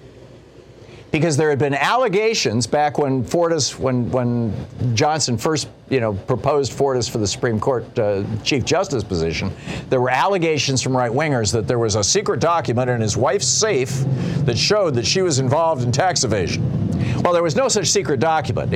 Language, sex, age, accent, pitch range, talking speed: English, male, 50-69, American, 115-150 Hz, 180 wpm